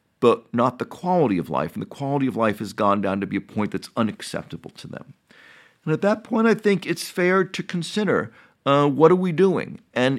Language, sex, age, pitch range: English, male, 50-69, 105-160 Hz